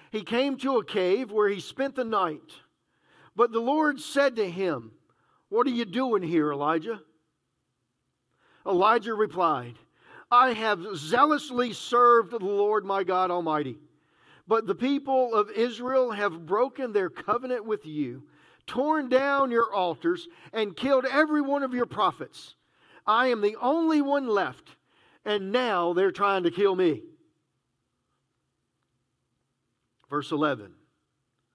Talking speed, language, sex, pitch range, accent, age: 135 wpm, English, male, 160-260 Hz, American, 50-69